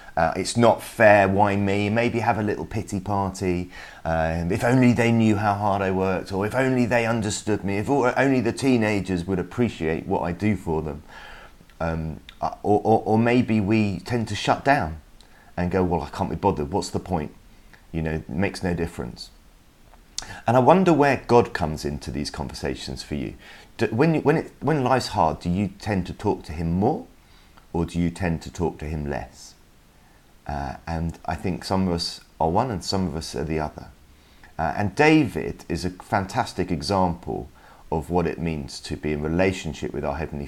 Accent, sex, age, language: British, male, 30-49, English